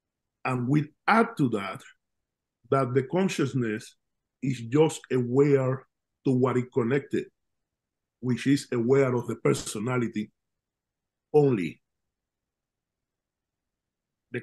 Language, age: English, 50-69